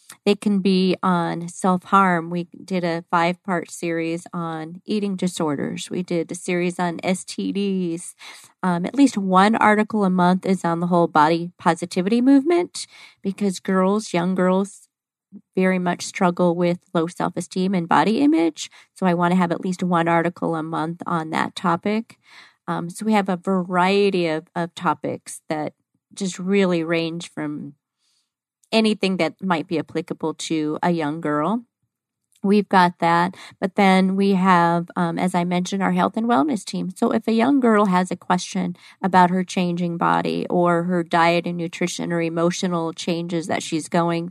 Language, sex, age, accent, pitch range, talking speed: English, female, 40-59, American, 170-195 Hz, 165 wpm